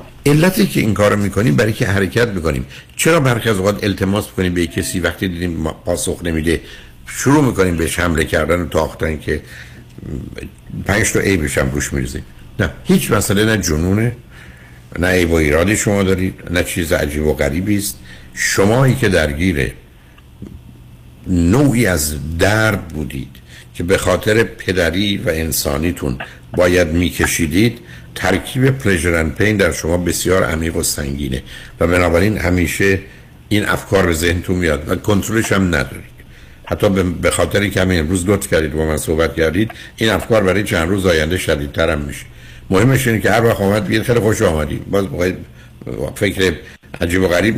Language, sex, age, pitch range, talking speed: Persian, male, 60-79, 75-105 Hz, 155 wpm